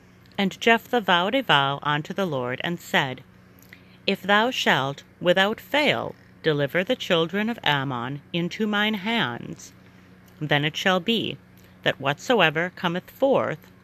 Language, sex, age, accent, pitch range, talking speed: English, female, 40-59, American, 140-195 Hz, 135 wpm